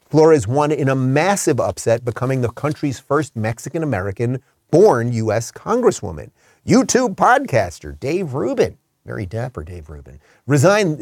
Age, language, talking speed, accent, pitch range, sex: 30-49, English, 120 wpm, American, 115-160 Hz, male